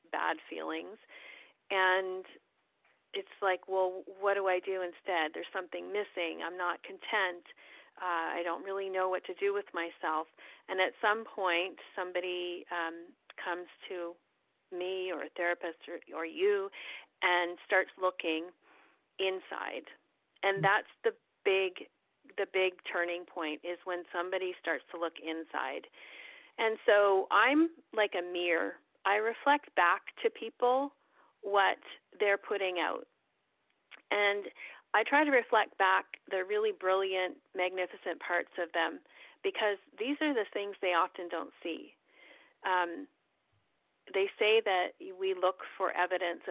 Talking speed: 135 wpm